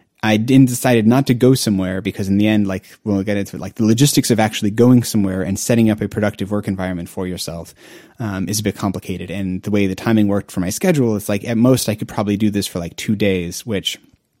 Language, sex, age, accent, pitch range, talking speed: English, male, 30-49, American, 100-120 Hz, 250 wpm